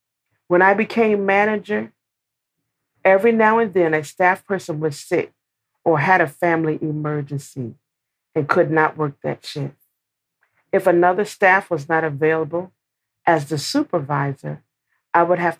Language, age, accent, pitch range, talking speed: English, 50-69, American, 140-175 Hz, 140 wpm